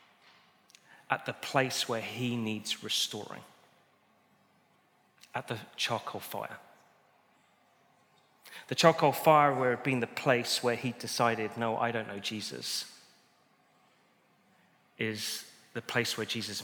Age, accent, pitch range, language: 30-49, British, 135-220 Hz, English